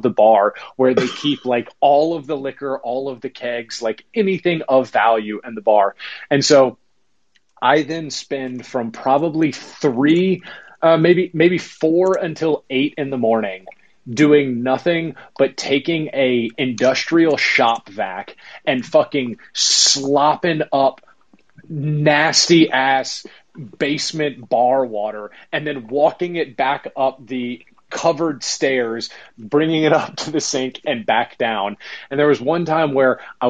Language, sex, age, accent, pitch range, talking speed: English, male, 30-49, American, 120-155 Hz, 145 wpm